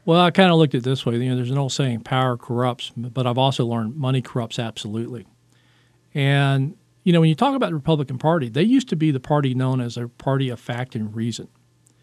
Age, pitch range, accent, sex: 50-69, 130-155 Hz, American, male